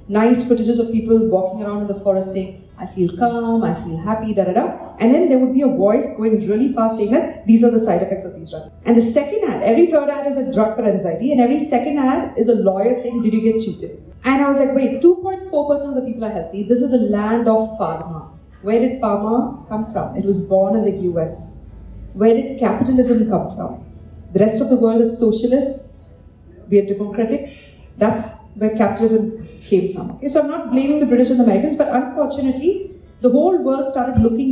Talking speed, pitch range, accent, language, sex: 225 wpm, 205-260 Hz, Indian, English, female